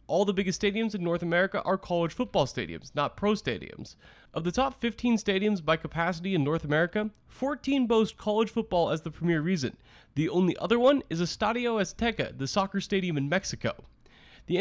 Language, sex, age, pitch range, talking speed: English, male, 20-39, 160-220 Hz, 185 wpm